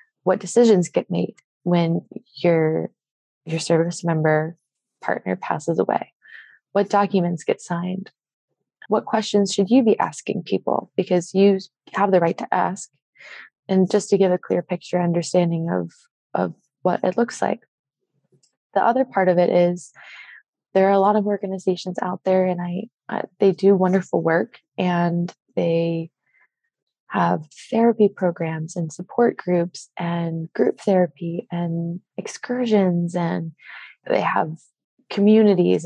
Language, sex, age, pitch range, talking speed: English, female, 20-39, 175-210 Hz, 135 wpm